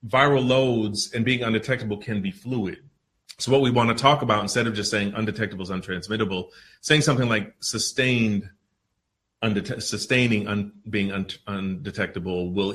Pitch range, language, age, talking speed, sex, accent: 100-125 Hz, English, 30-49, 140 wpm, male, American